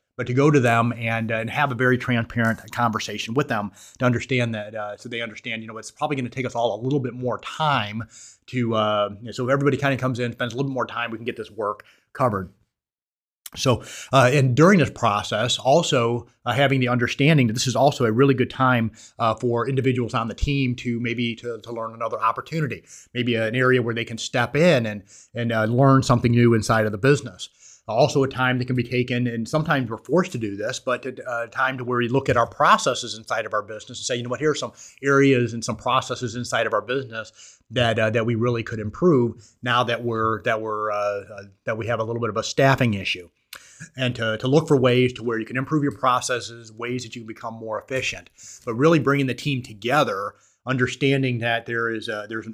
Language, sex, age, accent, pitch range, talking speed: English, male, 30-49, American, 110-130 Hz, 235 wpm